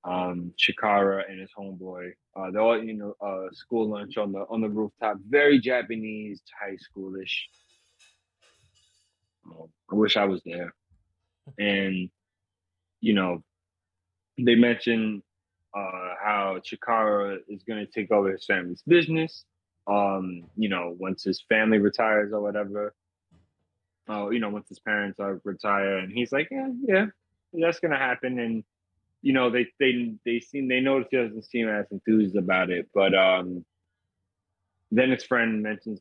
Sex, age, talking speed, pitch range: male, 20-39, 150 wpm, 90-110 Hz